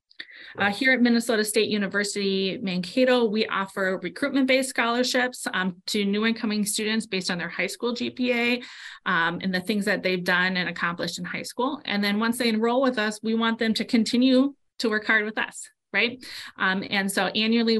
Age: 30-49